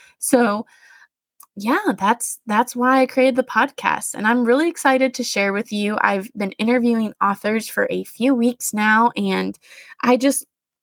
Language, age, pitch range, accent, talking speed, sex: English, 20-39, 200-255 Hz, American, 160 wpm, female